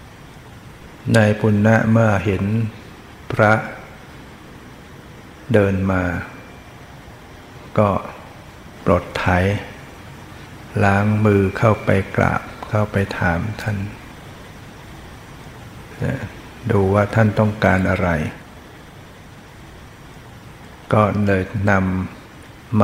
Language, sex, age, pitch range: Thai, male, 60-79, 95-110 Hz